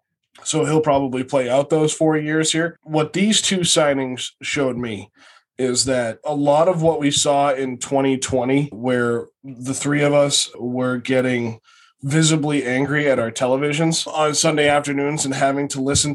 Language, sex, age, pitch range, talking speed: English, male, 20-39, 125-145 Hz, 165 wpm